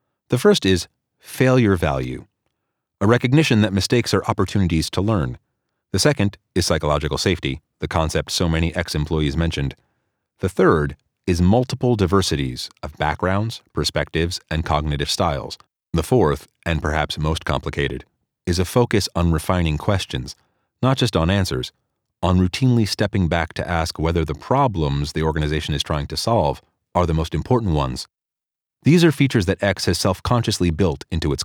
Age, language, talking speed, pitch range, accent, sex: 30-49, English, 155 wpm, 80-105 Hz, American, male